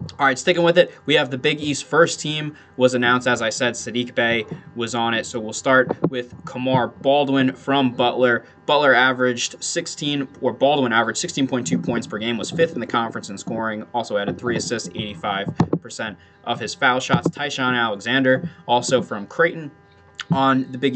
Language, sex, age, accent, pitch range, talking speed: English, male, 20-39, American, 115-135 Hz, 185 wpm